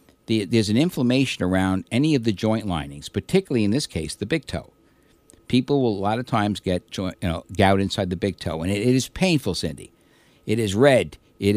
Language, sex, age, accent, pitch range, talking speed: English, male, 60-79, American, 95-135 Hz, 195 wpm